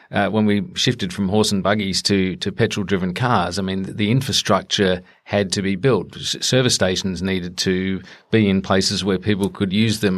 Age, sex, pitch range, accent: 40-59, male, 95-105 Hz, Australian